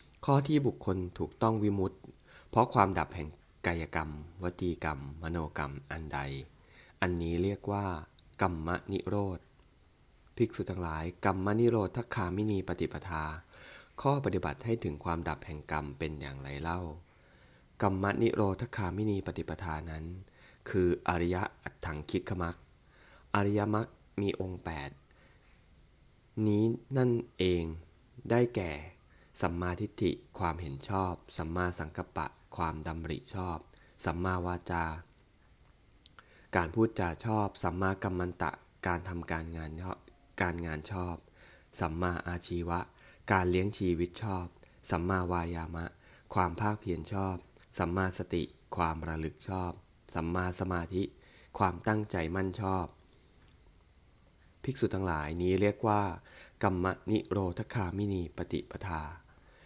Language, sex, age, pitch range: English, male, 20-39, 80-95 Hz